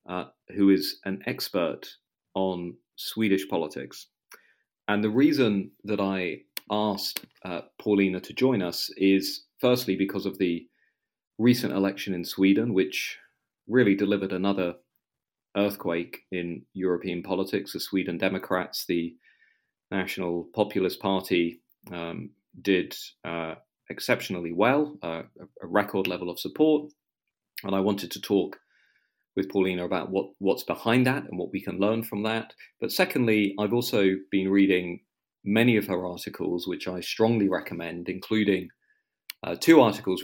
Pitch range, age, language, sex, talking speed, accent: 90-105 Hz, 40-59, English, male, 135 wpm, British